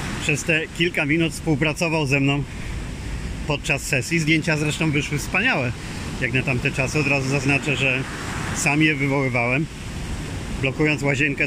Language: Polish